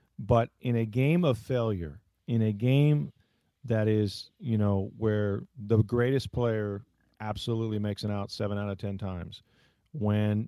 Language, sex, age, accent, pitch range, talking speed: English, male, 40-59, American, 100-120 Hz, 155 wpm